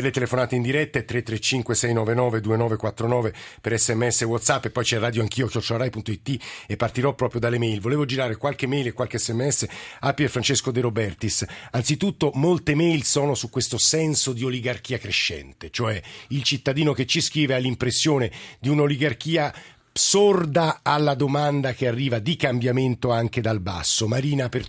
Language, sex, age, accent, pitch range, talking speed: Italian, male, 50-69, native, 120-145 Hz, 155 wpm